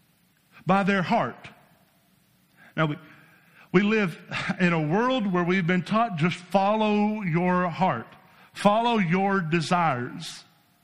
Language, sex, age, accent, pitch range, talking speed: English, male, 50-69, American, 170-220 Hz, 115 wpm